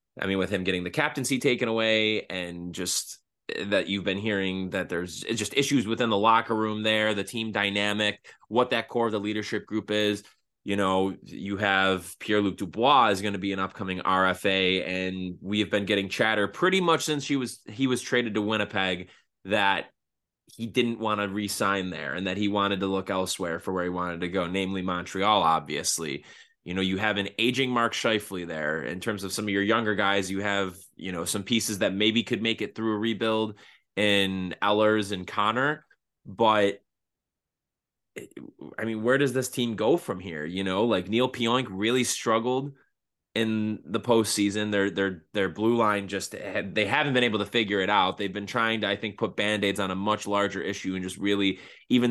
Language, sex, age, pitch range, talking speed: English, male, 20-39, 95-115 Hz, 200 wpm